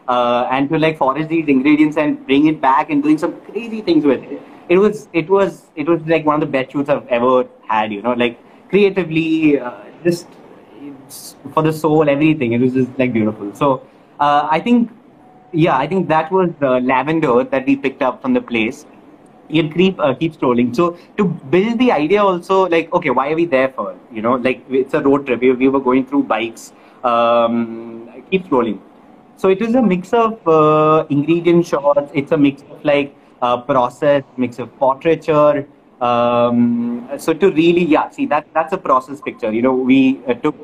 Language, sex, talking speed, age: English, male, 200 wpm, 30-49